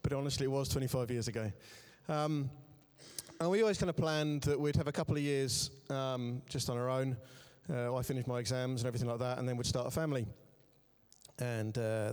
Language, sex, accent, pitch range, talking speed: English, male, British, 125-145 Hz, 215 wpm